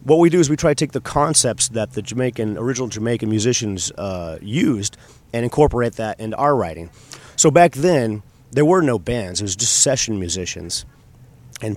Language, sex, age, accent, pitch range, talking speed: English, male, 30-49, American, 110-135 Hz, 190 wpm